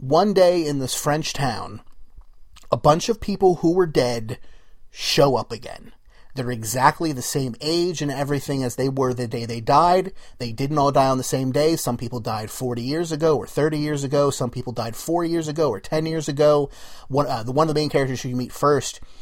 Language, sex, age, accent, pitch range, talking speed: English, male, 30-49, American, 125-160 Hz, 215 wpm